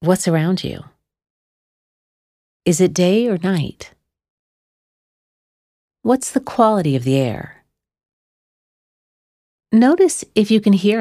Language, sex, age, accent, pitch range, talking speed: English, female, 40-59, American, 130-210 Hz, 105 wpm